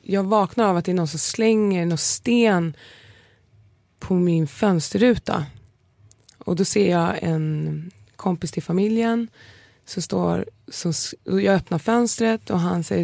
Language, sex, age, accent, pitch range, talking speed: Swedish, female, 20-39, native, 125-210 Hz, 145 wpm